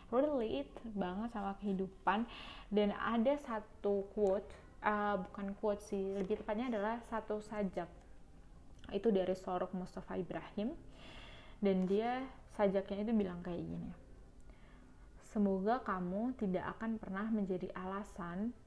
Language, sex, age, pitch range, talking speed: Indonesian, female, 20-39, 180-210 Hz, 115 wpm